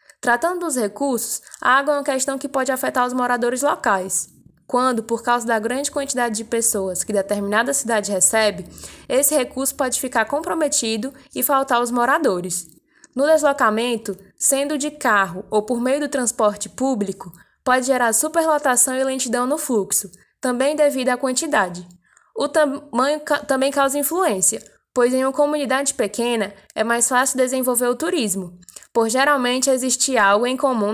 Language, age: Portuguese, 10-29